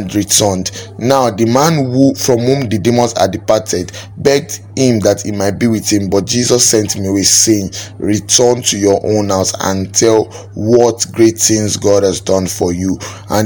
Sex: male